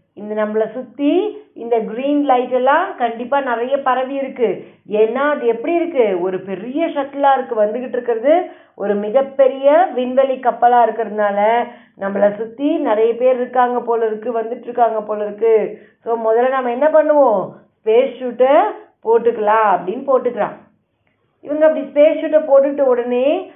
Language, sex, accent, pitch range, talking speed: Tamil, female, native, 225-290 Hz, 125 wpm